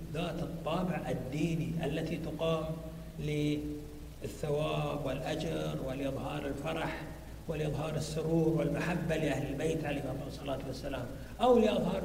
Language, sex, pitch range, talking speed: Arabic, male, 160-205 Hz, 95 wpm